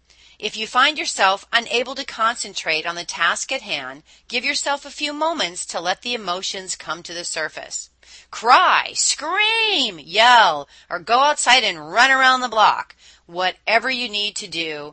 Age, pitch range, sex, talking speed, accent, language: 40-59, 165-245 Hz, female, 165 wpm, American, English